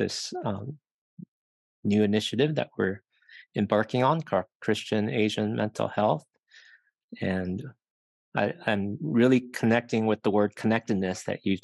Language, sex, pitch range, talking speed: English, male, 100-115 Hz, 115 wpm